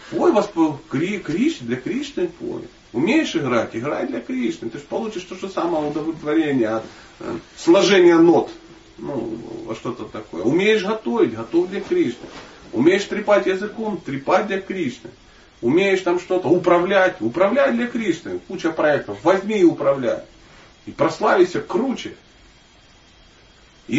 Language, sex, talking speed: Russian, male, 125 wpm